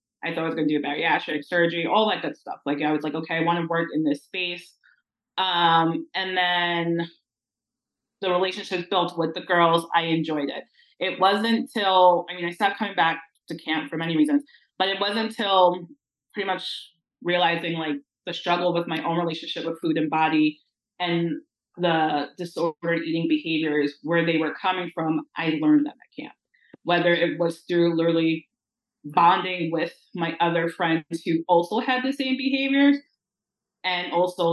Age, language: 20-39, English